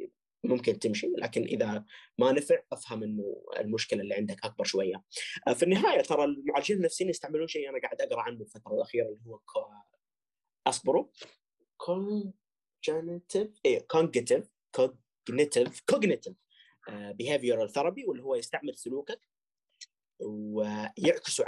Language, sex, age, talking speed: Arabic, male, 30-49, 125 wpm